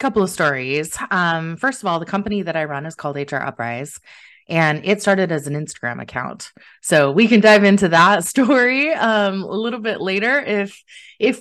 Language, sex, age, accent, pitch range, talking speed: English, female, 20-39, American, 150-205 Hz, 195 wpm